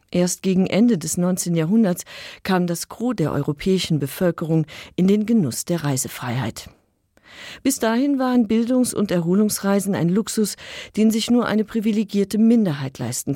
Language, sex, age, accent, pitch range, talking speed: German, female, 40-59, German, 150-215 Hz, 145 wpm